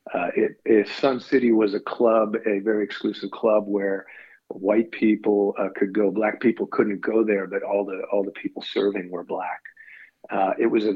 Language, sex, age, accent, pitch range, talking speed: English, male, 50-69, American, 100-120 Hz, 195 wpm